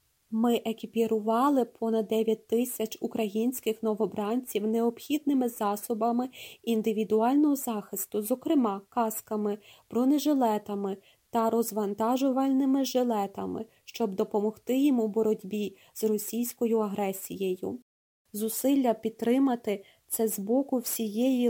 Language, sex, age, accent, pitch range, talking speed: Ukrainian, female, 20-39, native, 210-240 Hz, 85 wpm